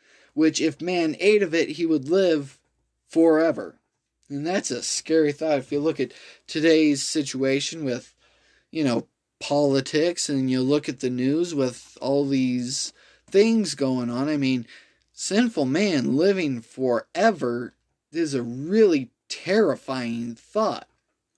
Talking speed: 135 wpm